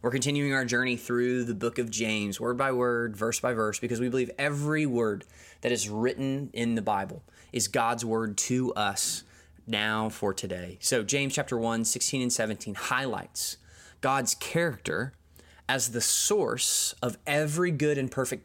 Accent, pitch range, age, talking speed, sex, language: American, 110-145 Hz, 20-39, 170 wpm, male, English